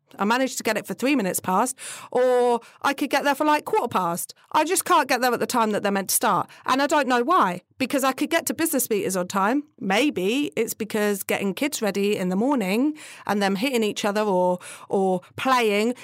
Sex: female